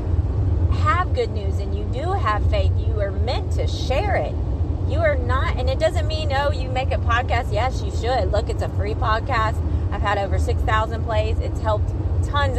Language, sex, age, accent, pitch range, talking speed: English, female, 30-49, American, 85-95 Hz, 200 wpm